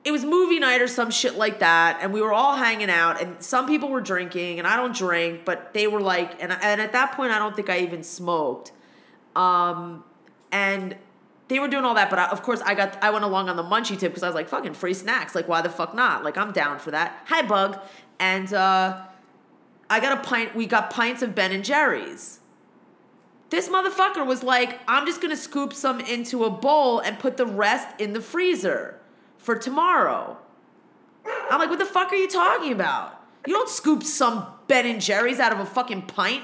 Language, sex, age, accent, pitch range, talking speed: English, female, 30-49, American, 200-300 Hz, 220 wpm